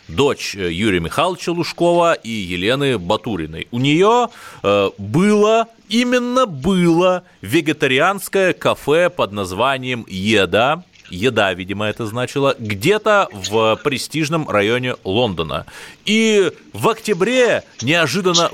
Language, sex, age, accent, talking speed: Russian, male, 30-49, native, 100 wpm